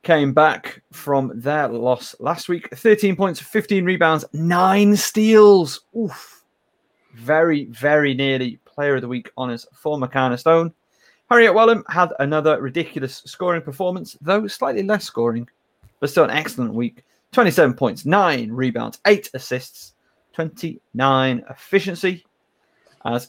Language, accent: English, British